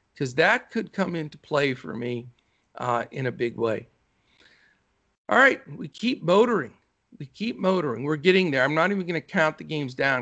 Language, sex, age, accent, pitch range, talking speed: English, male, 50-69, American, 130-170 Hz, 195 wpm